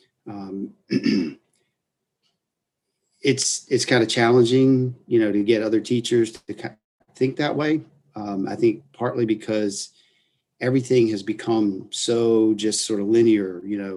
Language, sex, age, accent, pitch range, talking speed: English, male, 40-59, American, 105-120 Hz, 130 wpm